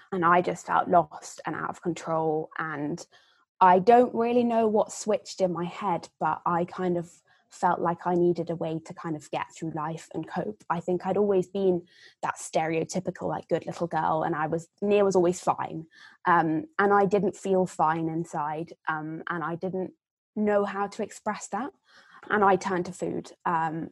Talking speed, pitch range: 200 wpm, 165-195 Hz